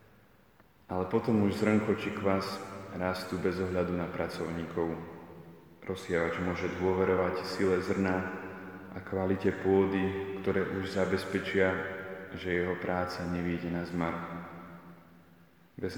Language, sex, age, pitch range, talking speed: Slovak, male, 30-49, 90-95 Hz, 110 wpm